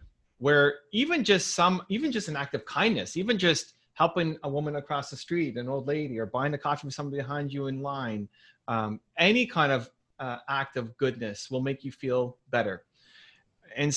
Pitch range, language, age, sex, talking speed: 125-170 Hz, English, 30-49, male, 195 wpm